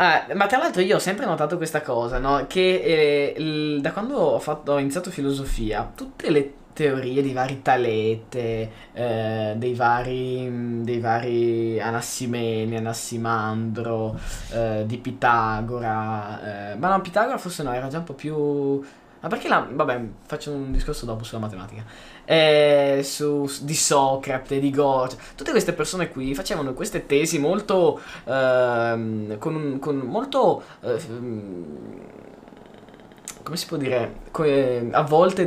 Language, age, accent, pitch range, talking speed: Italian, 20-39, native, 120-160 Hz, 145 wpm